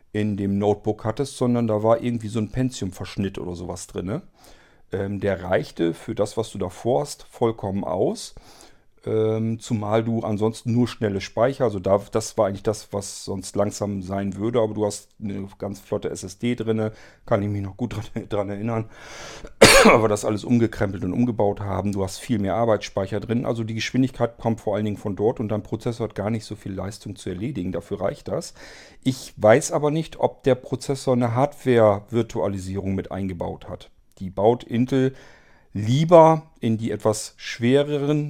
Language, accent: German, German